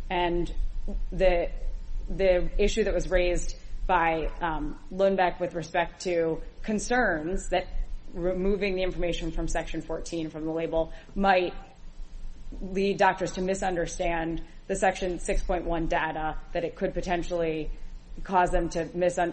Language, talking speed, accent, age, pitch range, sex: English, 125 wpm, American, 30-49, 170-195 Hz, female